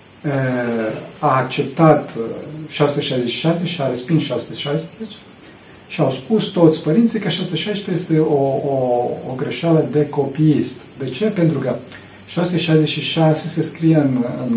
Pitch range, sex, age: 130-165 Hz, male, 40-59